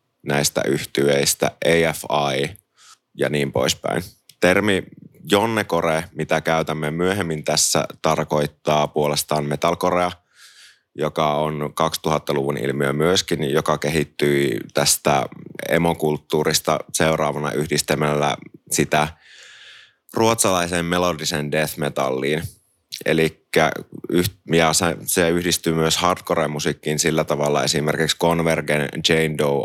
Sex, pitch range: male, 75-80 Hz